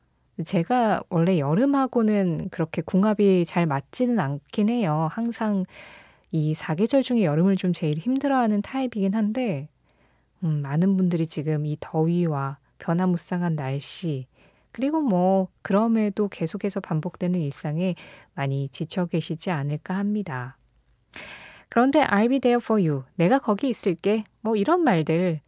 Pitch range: 160-220 Hz